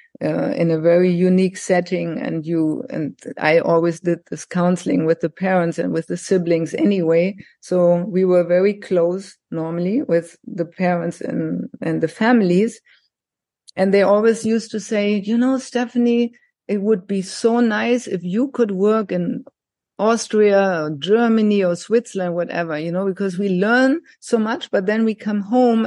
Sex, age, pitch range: female, 50-69, 180-230 Hz